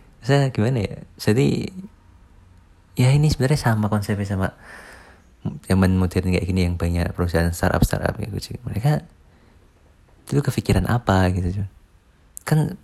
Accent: native